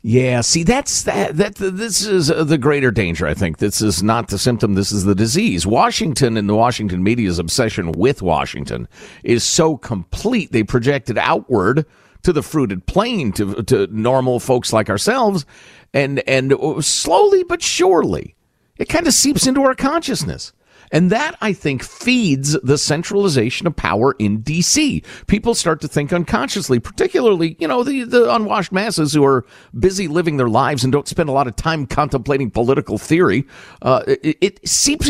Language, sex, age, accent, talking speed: English, male, 50-69, American, 175 wpm